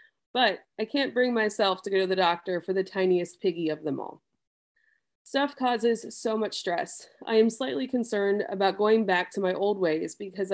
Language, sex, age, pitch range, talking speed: English, female, 20-39, 185-230 Hz, 195 wpm